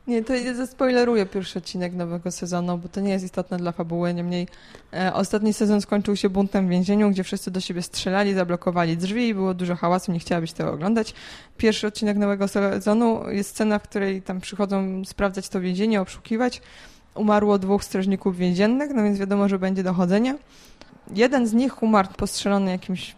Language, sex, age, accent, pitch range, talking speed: Polish, female, 20-39, native, 185-225 Hz, 180 wpm